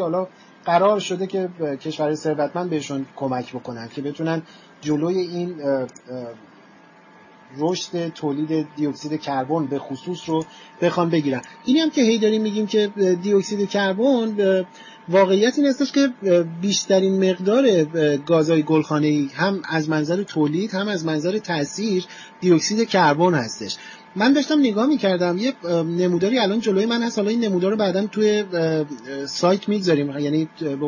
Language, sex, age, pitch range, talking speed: Persian, male, 30-49, 155-215 Hz, 130 wpm